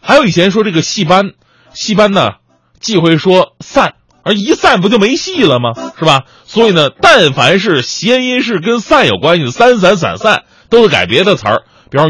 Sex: male